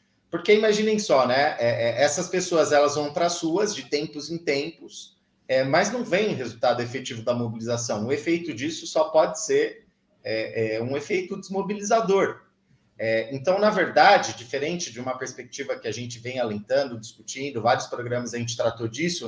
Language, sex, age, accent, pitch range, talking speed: Portuguese, male, 30-49, Brazilian, 125-165 Hz, 155 wpm